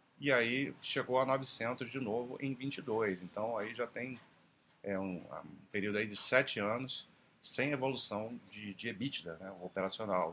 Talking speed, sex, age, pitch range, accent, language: 165 wpm, male, 40-59, 95-125 Hz, Brazilian, Portuguese